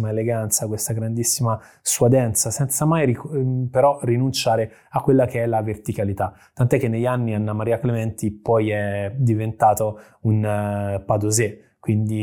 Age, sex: 20-39, male